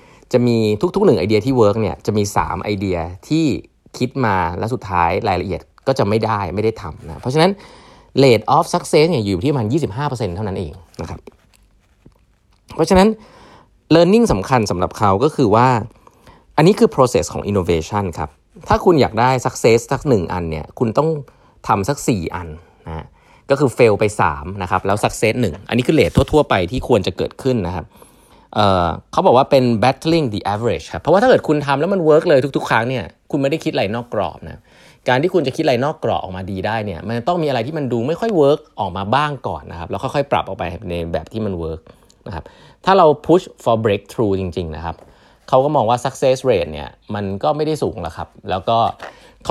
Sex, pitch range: male, 95-145 Hz